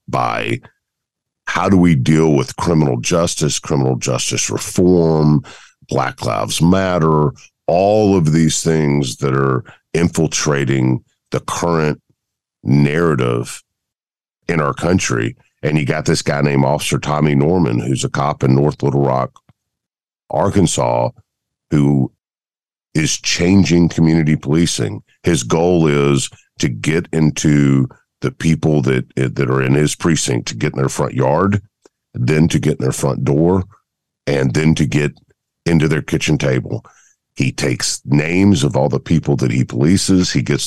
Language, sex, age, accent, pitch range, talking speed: English, male, 50-69, American, 70-85 Hz, 140 wpm